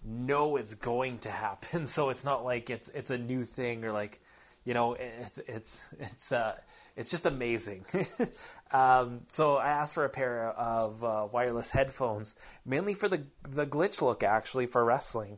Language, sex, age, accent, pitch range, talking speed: English, male, 20-39, American, 110-140 Hz, 175 wpm